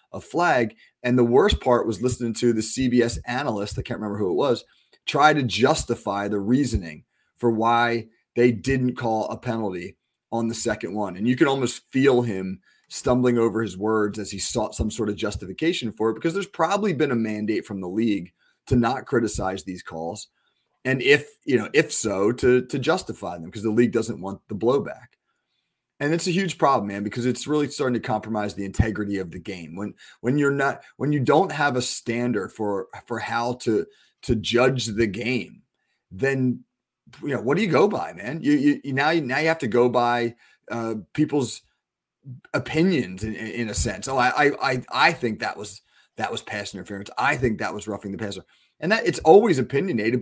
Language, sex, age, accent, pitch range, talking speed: English, male, 30-49, American, 105-130 Hz, 205 wpm